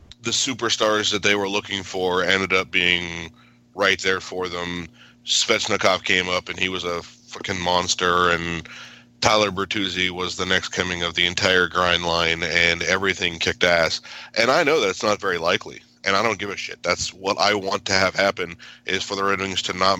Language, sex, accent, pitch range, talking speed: English, male, American, 90-100 Hz, 200 wpm